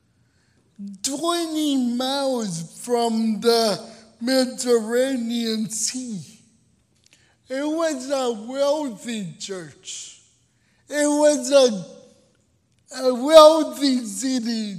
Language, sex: English, male